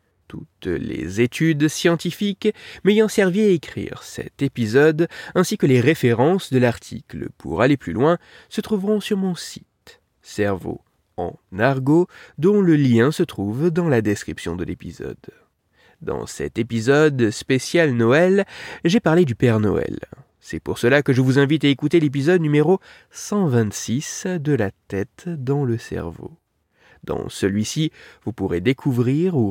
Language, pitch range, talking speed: French, 115-180 Hz, 145 wpm